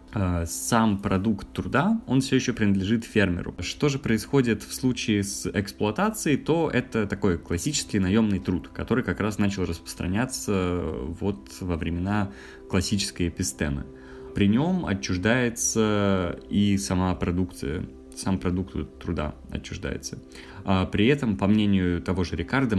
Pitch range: 85-110 Hz